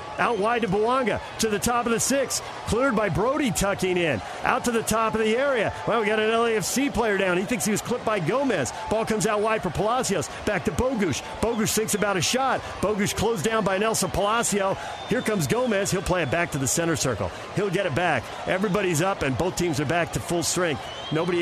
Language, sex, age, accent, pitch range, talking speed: English, male, 50-69, American, 160-205 Hz, 230 wpm